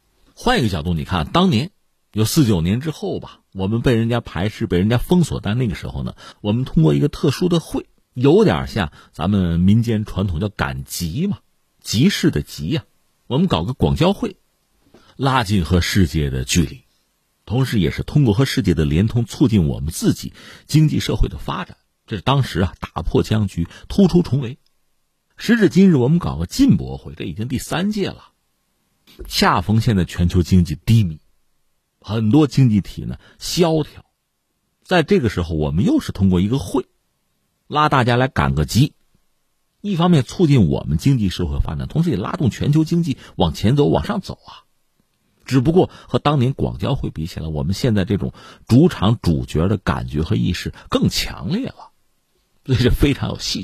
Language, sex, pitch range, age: Chinese, male, 90-140 Hz, 50-69